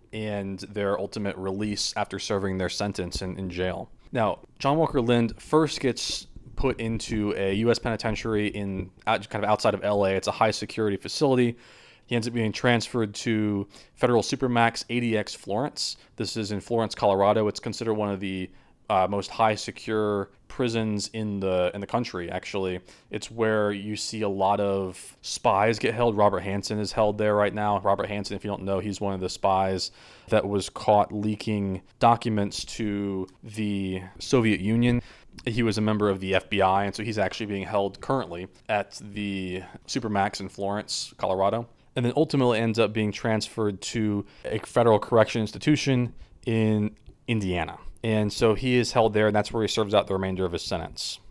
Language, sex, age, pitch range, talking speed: English, male, 20-39, 100-115 Hz, 175 wpm